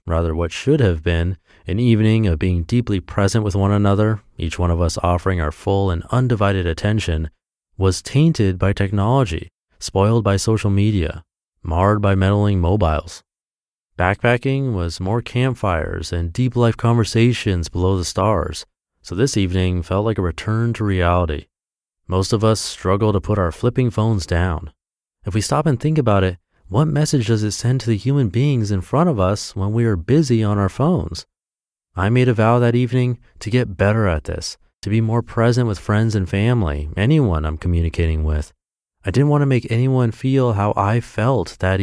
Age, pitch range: 30-49, 90-115 Hz